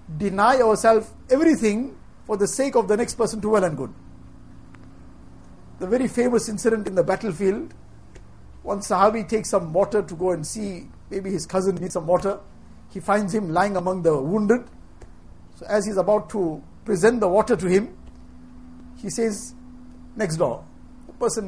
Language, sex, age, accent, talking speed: English, male, 60-79, Indian, 170 wpm